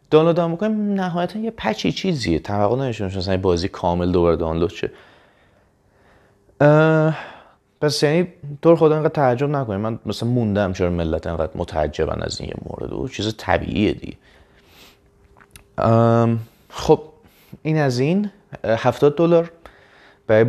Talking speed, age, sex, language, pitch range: 130 wpm, 30-49, male, Persian, 95-145 Hz